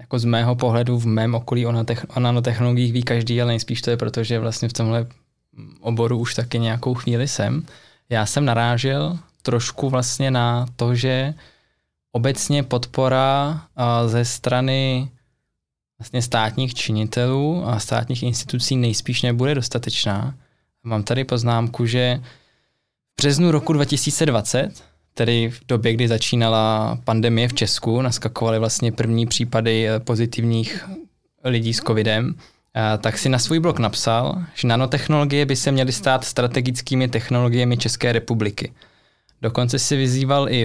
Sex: male